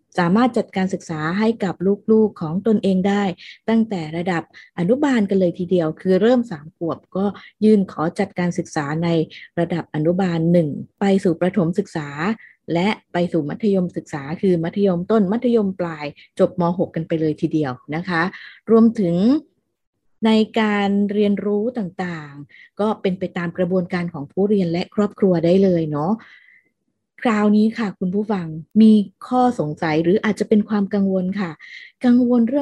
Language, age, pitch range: Thai, 20-39, 175-220 Hz